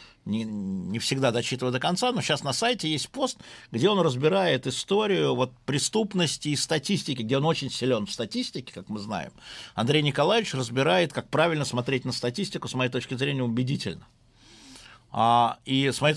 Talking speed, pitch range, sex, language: 170 wpm, 115-145 Hz, male, Russian